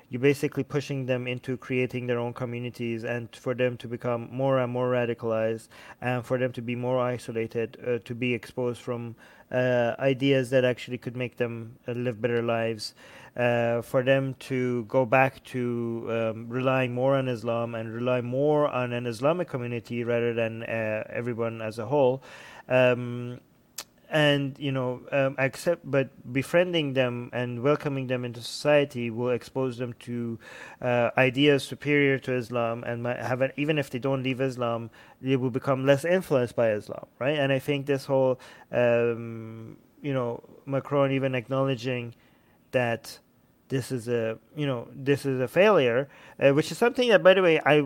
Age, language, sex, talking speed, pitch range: 30-49, English, male, 170 wpm, 120-140 Hz